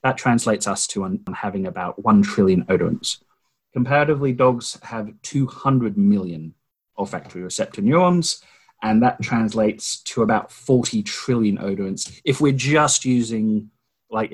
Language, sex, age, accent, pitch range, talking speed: English, male, 30-49, British, 105-135 Hz, 125 wpm